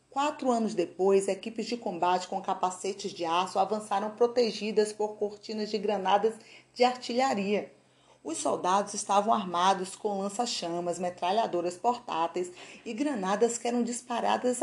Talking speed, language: 125 wpm, English